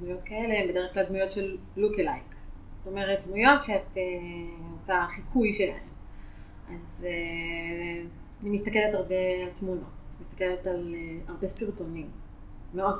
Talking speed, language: 140 wpm, Hebrew